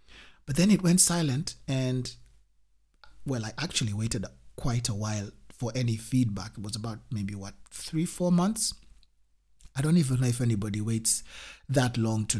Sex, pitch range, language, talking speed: male, 105-125 Hz, English, 165 wpm